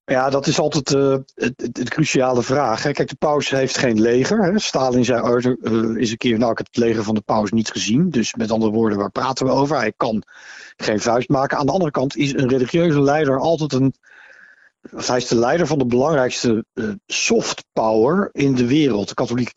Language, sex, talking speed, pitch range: Dutch, male, 210 wpm, 120-165 Hz